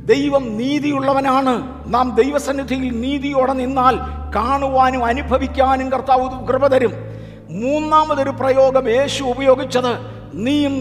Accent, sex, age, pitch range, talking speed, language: native, male, 50-69, 250-275 Hz, 95 wpm, Malayalam